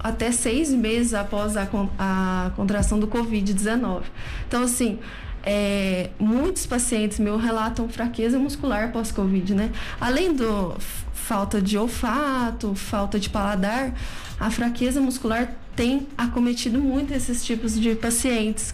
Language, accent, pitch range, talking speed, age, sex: Portuguese, Brazilian, 210-245 Hz, 125 wpm, 10-29, female